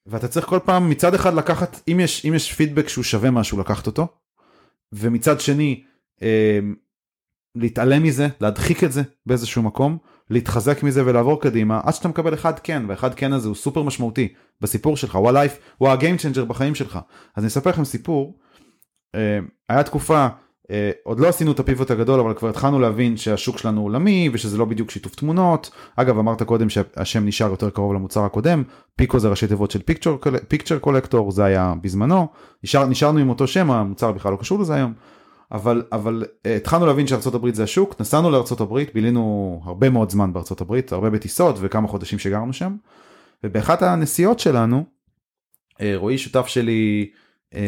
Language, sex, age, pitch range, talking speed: Hebrew, male, 30-49, 110-145 Hz, 165 wpm